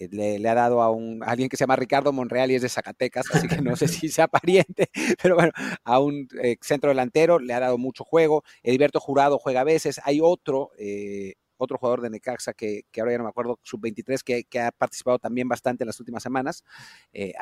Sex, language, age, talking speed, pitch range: male, Spanish, 40-59, 230 wpm, 115-145 Hz